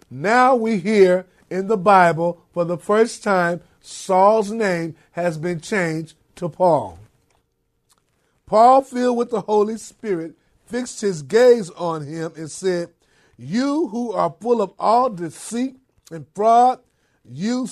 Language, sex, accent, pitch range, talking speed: English, male, American, 175-240 Hz, 135 wpm